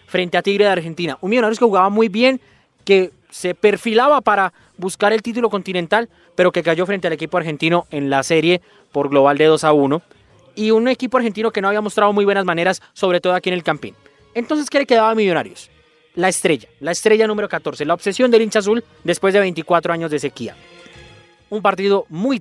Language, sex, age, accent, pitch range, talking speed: Spanish, male, 20-39, Colombian, 170-215 Hz, 210 wpm